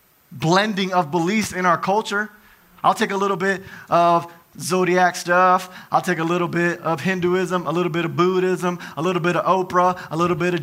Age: 30-49